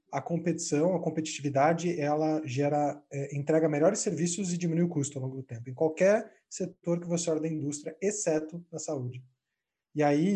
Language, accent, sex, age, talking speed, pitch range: Portuguese, Brazilian, male, 20-39, 180 wpm, 150-185 Hz